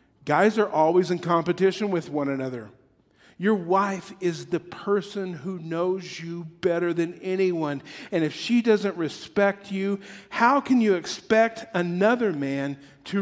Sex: male